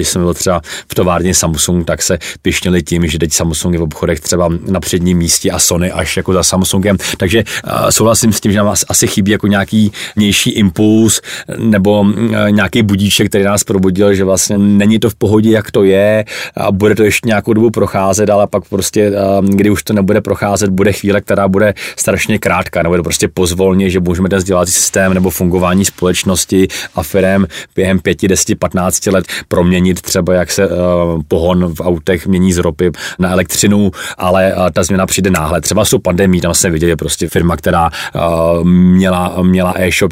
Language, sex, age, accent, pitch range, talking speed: Czech, male, 30-49, native, 85-100 Hz, 190 wpm